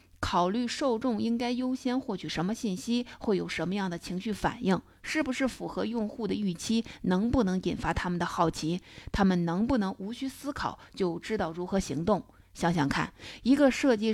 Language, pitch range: Chinese, 175-220 Hz